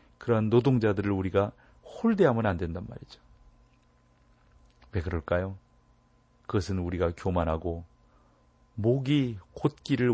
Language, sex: Korean, male